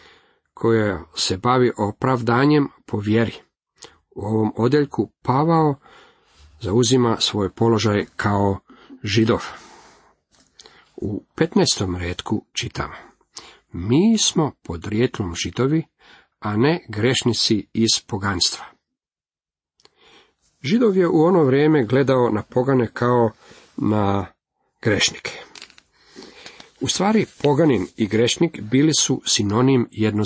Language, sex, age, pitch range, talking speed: Croatian, male, 40-59, 105-135 Hz, 95 wpm